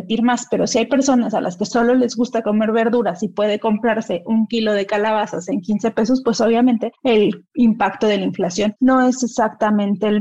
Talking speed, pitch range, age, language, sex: 200 wpm, 215-265 Hz, 30-49, Spanish, female